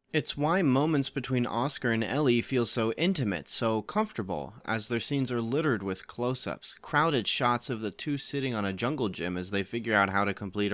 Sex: male